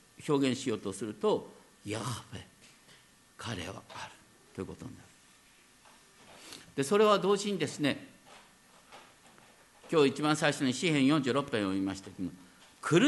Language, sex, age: Japanese, male, 50-69